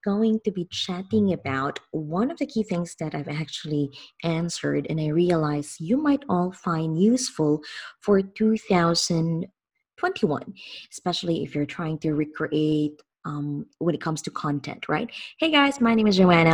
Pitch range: 160-230 Hz